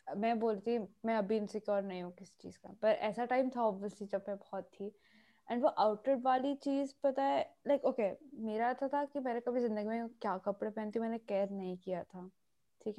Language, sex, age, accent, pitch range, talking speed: Hindi, female, 20-39, native, 205-260 Hz, 220 wpm